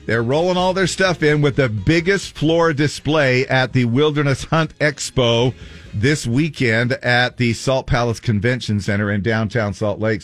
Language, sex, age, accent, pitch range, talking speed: English, male, 50-69, American, 115-145 Hz, 165 wpm